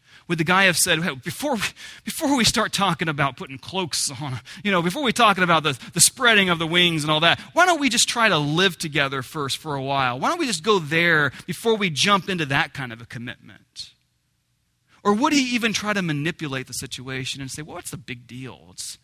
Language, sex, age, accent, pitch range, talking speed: English, male, 30-49, American, 130-180 Hz, 235 wpm